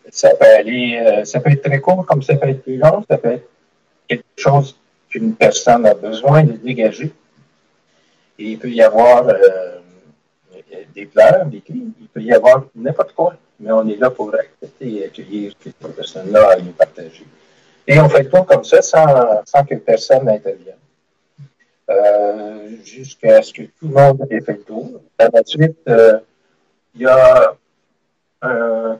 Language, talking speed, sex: French, 180 wpm, male